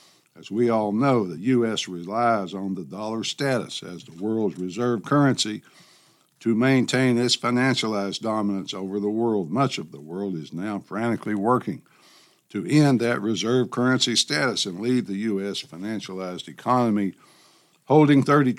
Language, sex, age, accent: English, male, 60-79, American